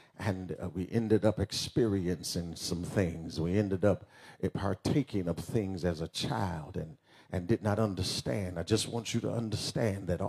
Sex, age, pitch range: male, 50-69, 100-130 Hz